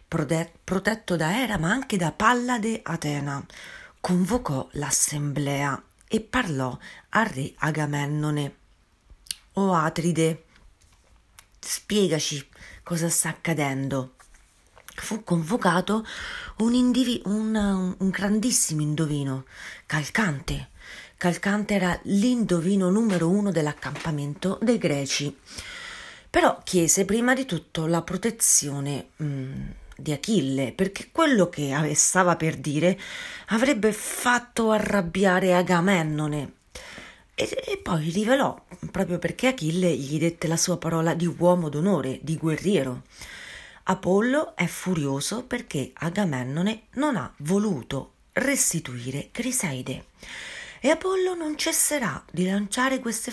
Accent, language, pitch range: native, Italian, 150-220 Hz